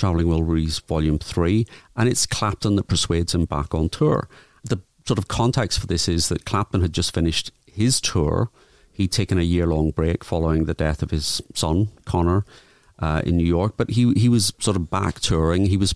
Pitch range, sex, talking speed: 85-105 Hz, male, 200 wpm